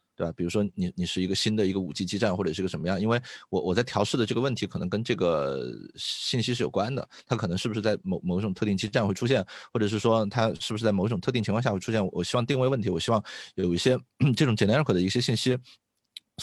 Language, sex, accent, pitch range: Chinese, male, native, 95-120 Hz